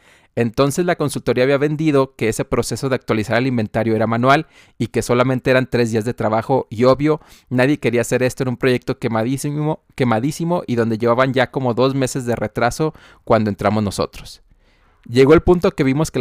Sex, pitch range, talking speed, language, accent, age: male, 115-140 Hz, 190 wpm, Spanish, Mexican, 30-49